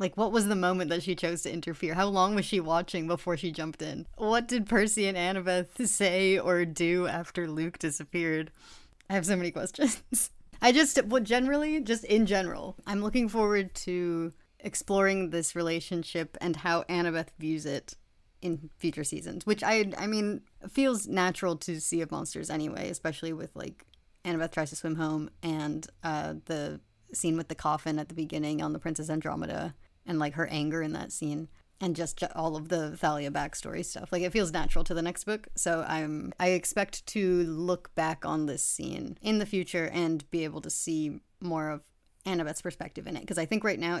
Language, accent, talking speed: English, American, 195 wpm